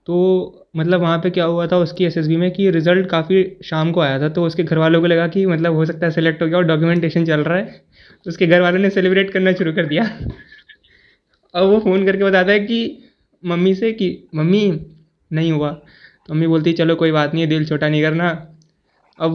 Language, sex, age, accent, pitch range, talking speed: Hindi, male, 20-39, native, 165-190 Hz, 225 wpm